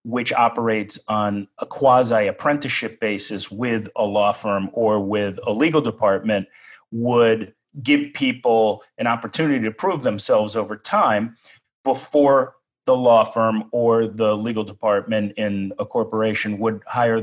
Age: 40-59